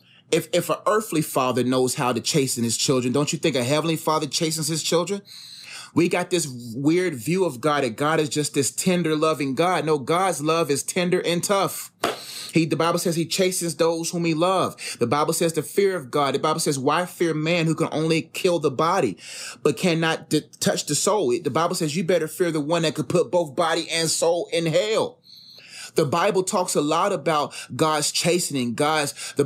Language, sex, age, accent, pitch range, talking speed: English, male, 30-49, American, 145-175 Hz, 210 wpm